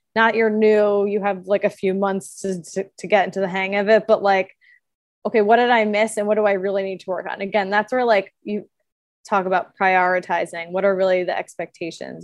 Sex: female